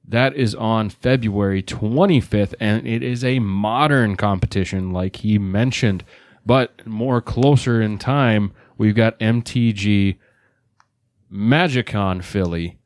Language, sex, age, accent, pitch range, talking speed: English, male, 30-49, American, 105-125 Hz, 110 wpm